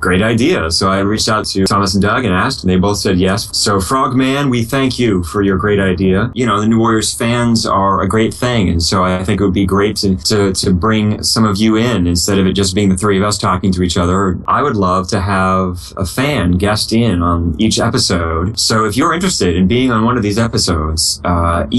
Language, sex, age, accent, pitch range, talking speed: English, male, 20-39, American, 95-120 Hz, 240 wpm